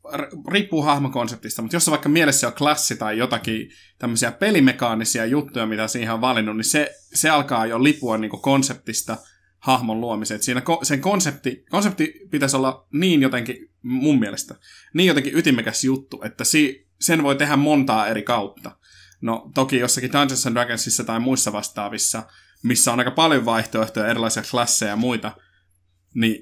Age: 20-39